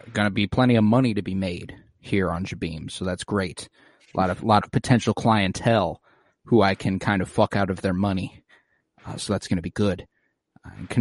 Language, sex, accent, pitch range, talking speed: English, male, American, 95-115 Hz, 230 wpm